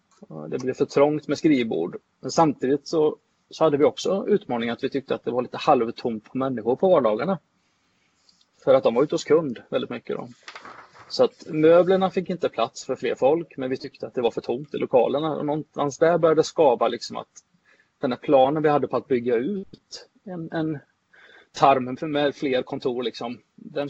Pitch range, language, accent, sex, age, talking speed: 135-185 Hz, Swedish, native, male, 30-49, 200 wpm